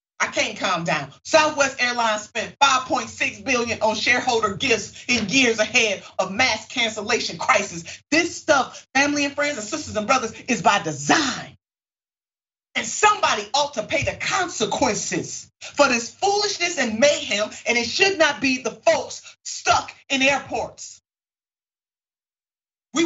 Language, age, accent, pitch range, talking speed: English, 40-59, American, 195-275 Hz, 140 wpm